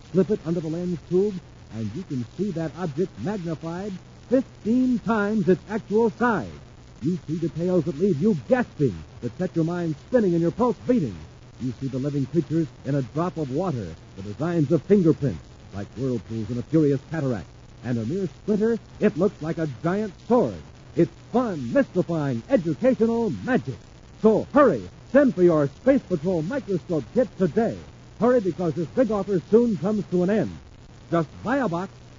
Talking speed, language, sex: 175 wpm, English, female